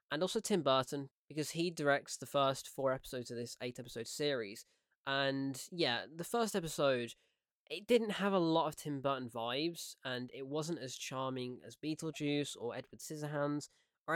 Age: 20-39